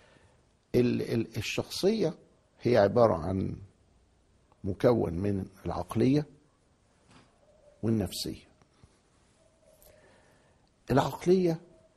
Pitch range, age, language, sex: 90-130 Hz, 60-79, Arabic, male